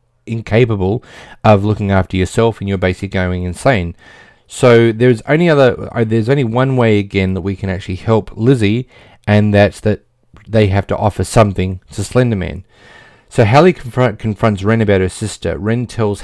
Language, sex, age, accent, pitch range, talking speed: English, male, 30-49, Australian, 95-115 Hz, 170 wpm